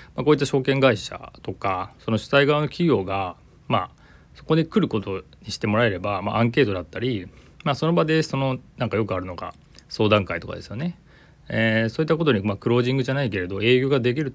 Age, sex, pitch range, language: 30-49, male, 95-135 Hz, Japanese